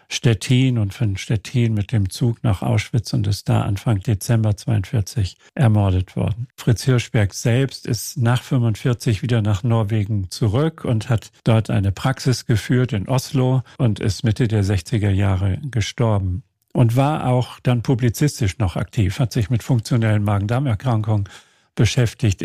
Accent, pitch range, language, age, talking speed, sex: German, 110-135 Hz, German, 50-69, 145 wpm, male